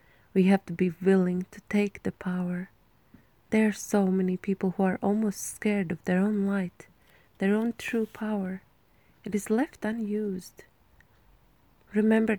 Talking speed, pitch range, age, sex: 150 wpm, 185-205 Hz, 20-39, female